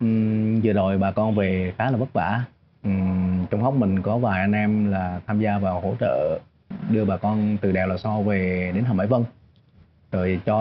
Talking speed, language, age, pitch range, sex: 210 wpm, Vietnamese, 20-39, 100-125 Hz, male